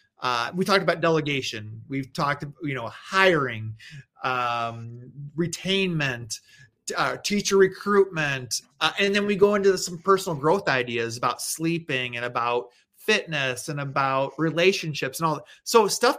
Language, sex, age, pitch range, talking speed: English, male, 30-49, 135-180 Hz, 140 wpm